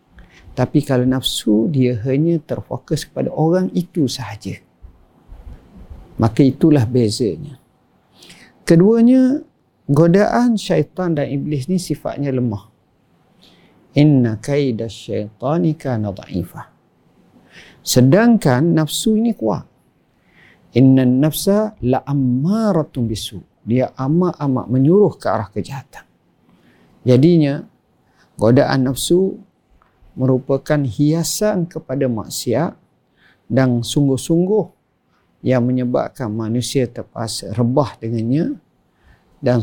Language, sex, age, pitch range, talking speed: Malay, male, 50-69, 115-155 Hz, 85 wpm